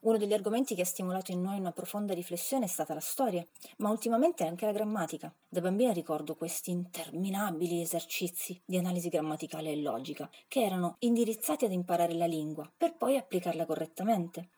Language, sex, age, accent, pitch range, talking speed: Italian, female, 30-49, native, 170-225 Hz, 175 wpm